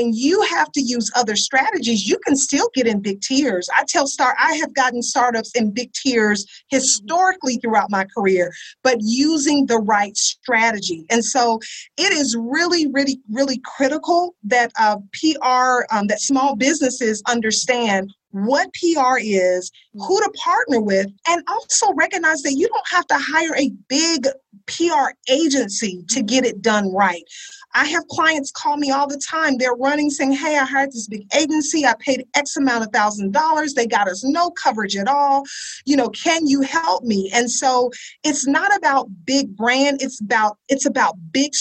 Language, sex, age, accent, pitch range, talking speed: English, female, 40-59, American, 225-290 Hz, 175 wpm